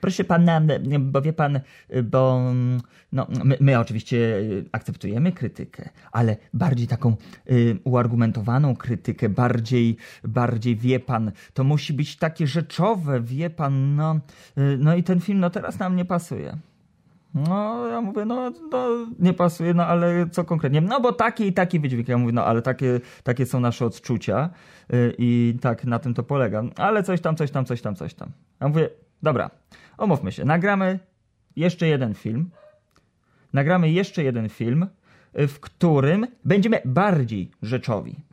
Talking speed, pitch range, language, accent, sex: 155 wpm, 120-170 Hz, Polish, native, male